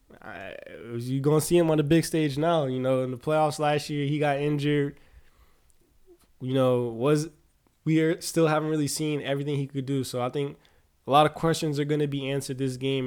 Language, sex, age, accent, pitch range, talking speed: English, male, 20-39, American, 130-150 Hz, 215 wpm